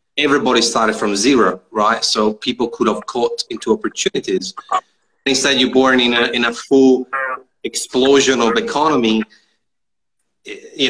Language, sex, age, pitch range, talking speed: English, male, 30-49, 110-155 Hz, 125 wpm